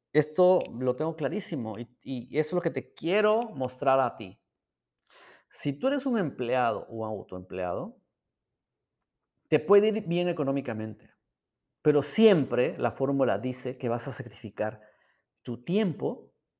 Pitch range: 120-170 Hz